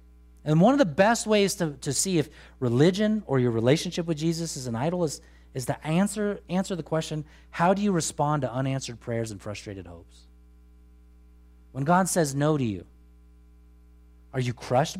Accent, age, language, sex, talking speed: American, 30-49, English, male, 180 wpm